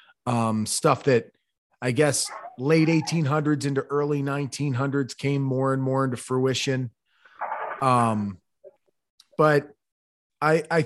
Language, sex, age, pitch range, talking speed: English, male, 30-49, 130-165 Hz, 120 wpm